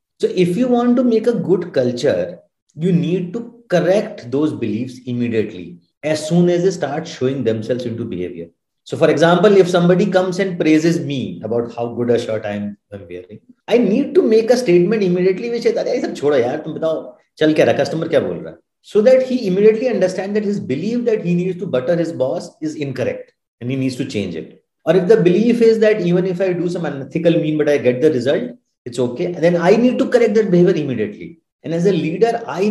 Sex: male